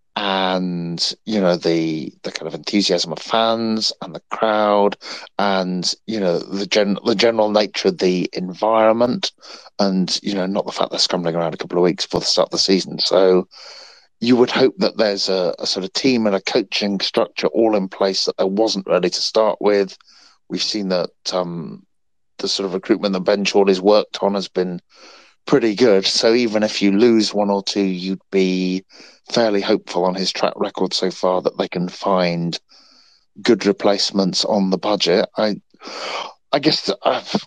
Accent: British